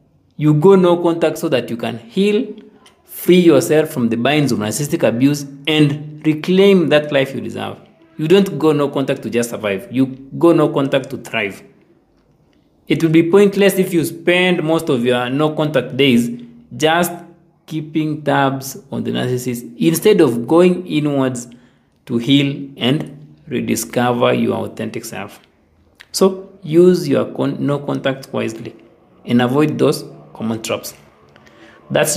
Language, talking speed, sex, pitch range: English, 145 wpm, male, 125-165 Hz